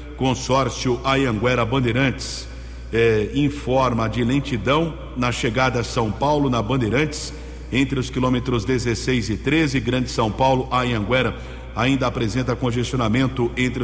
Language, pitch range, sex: English, 120-140 Hz, male